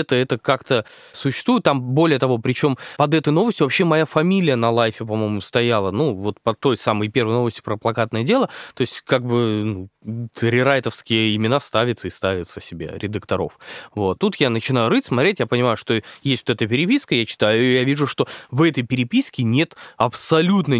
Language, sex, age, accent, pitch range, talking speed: Russian, male, 20-39, native, 115-160 Hz, 185 wpm